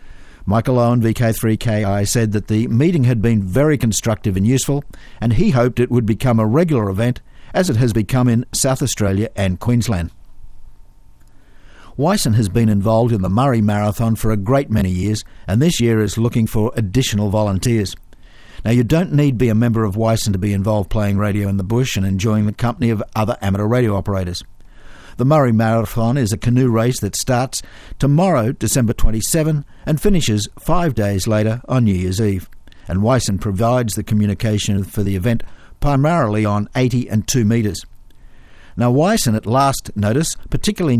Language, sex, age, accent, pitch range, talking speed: English, male, 50-69, Australian, 105-125 Hz, 175 wpm